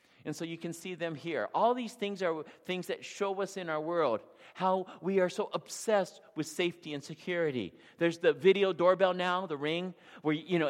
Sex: male